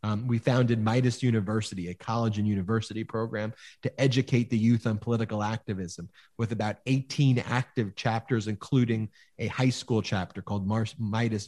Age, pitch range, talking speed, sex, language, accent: 30-49, 105-125 Hz, 150 wpm, male, English, American